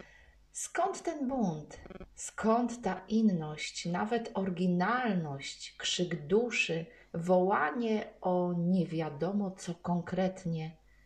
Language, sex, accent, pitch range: Polish, female, native, 175-235 Hz